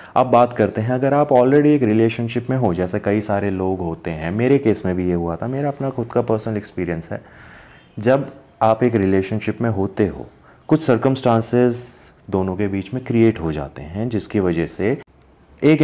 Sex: male